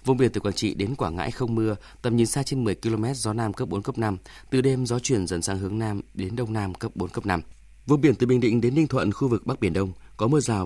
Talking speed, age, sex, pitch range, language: 300 wpm, 20-39, male, 95-120 Hz, Vietnamese